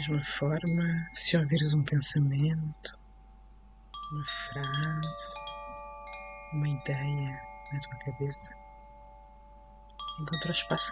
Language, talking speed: Portuguese, 100 wpm